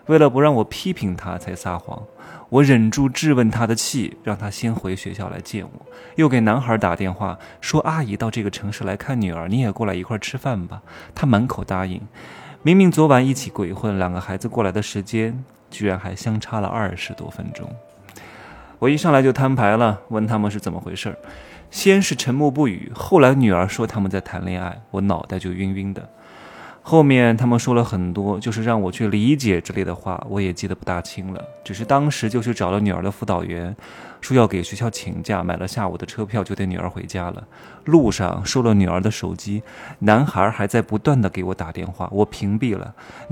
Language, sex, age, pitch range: Chinese, male, 20-39, 95-120 Hz